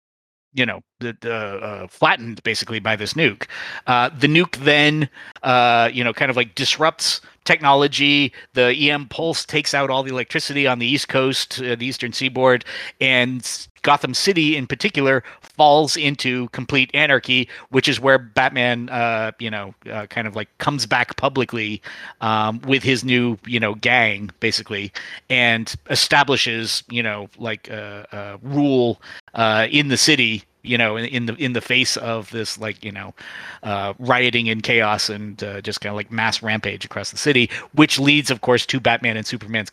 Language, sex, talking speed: English, male, 175 wpm